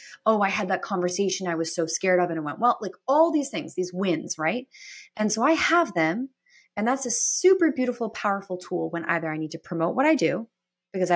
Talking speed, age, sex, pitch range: 230 wpm, 30-49, female, 165-250 Hz